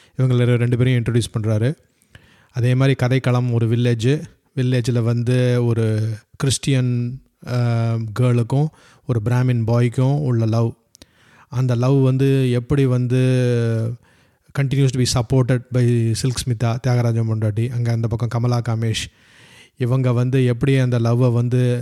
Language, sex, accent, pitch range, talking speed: Tamil, male, native, 115-130 Hz, 120 wpm